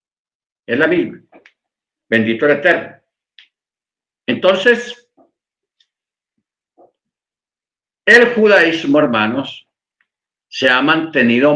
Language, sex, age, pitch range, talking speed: Spanish, male, 50-69, 120-185 Hz, 65 wpm